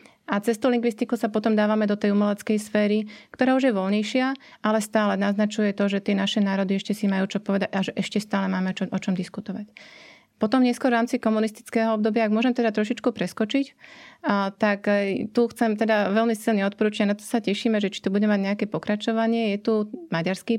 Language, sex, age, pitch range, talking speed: Slovak, female, 30-49, 200-225 Hz, 200 wpm